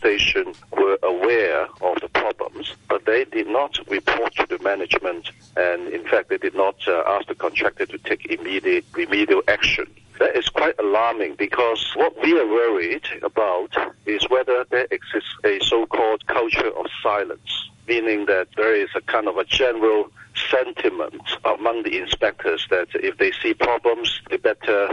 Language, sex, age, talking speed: English, male, 60-79, 165 wpm